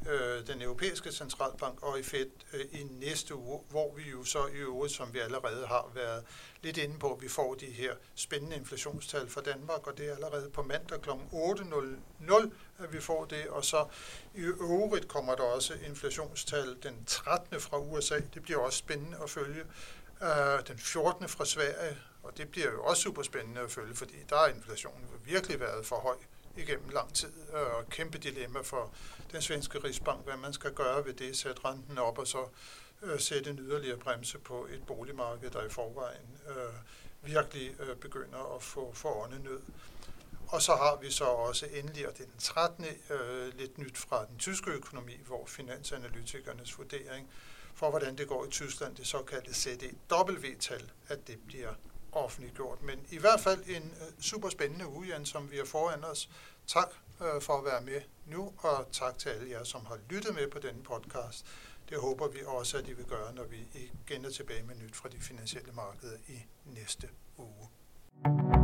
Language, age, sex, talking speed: Danish, 60-79, male, 180 wpm